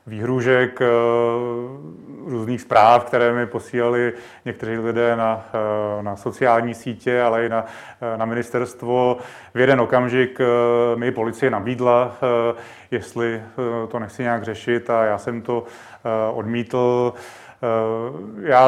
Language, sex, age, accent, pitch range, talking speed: Czech, male, 30-49, native, 115-125 Hz, 110 wpm